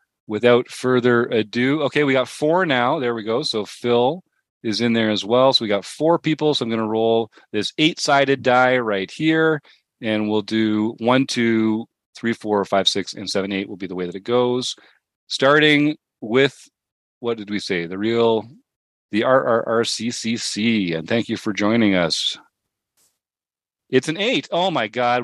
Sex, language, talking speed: male, English, 190 wpm